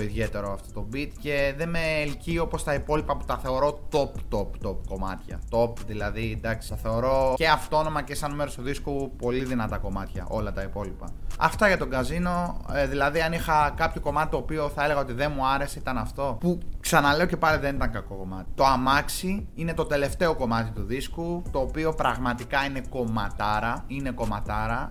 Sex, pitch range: male, 115-155 Hz